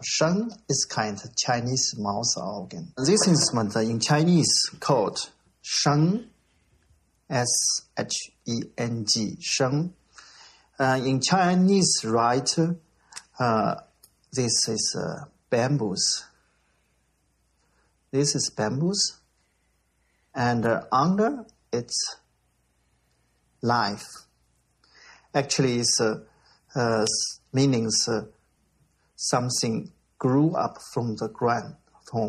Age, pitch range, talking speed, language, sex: 50-69, 110-140 Hz, 85 wpm, English, male